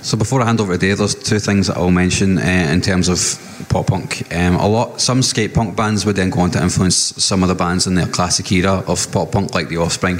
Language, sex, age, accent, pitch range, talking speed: English, male, 20-39, British, 85-100 Hz, 260 wpm